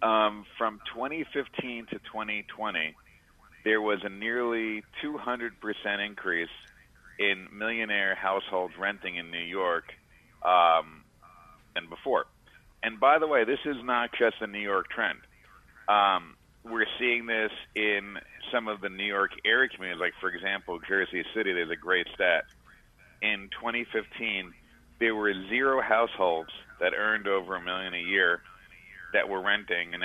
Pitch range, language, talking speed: 95-115 Hz, English, 140 wpm